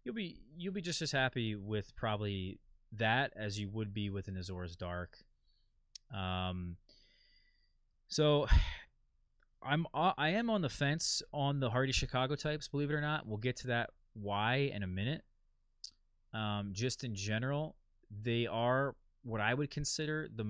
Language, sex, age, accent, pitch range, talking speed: English, male, 20-39, American, 100-135 Hz, 160 wpm